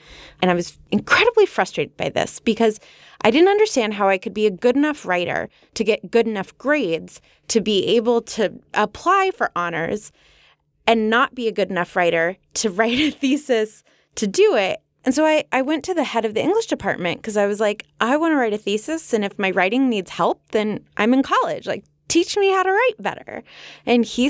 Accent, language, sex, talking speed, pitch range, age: American, English, female, 210 wpm, 200-275 Hz, 20-39